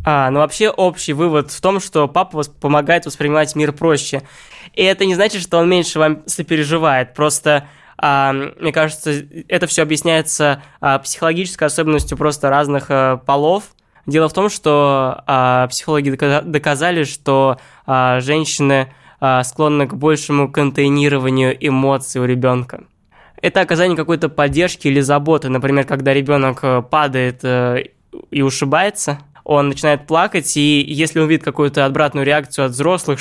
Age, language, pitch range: 20-39, Russian, 135-160 Hz